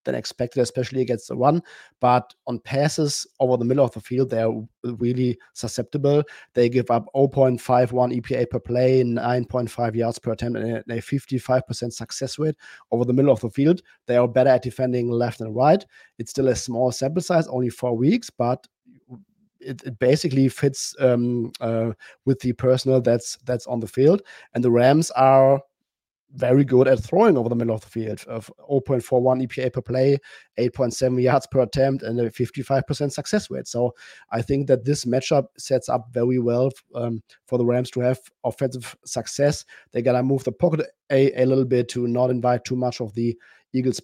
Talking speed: 185 wpm